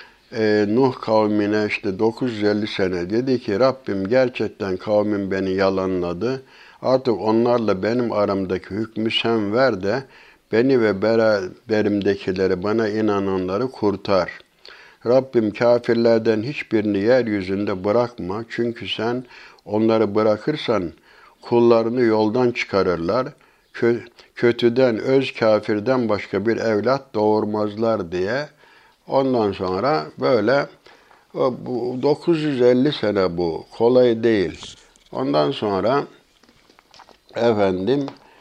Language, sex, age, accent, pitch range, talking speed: Turkish, male, 60-79, native, 100-120 Hz, 90 wpm